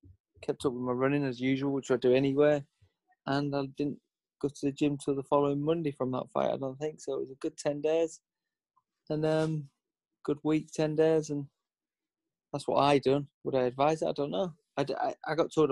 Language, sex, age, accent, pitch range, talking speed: English, male, 20-39, British, 125-145 Hz, 220 wpm